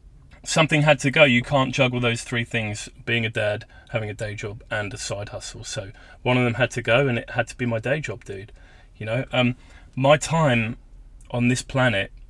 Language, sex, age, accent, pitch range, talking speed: English, male, 20-39, British, 110-135 Hz, 220 wpm